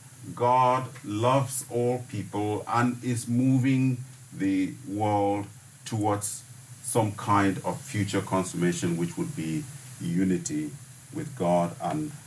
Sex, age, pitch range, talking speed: male, 50-69, 105-140 Hz, 110 wpm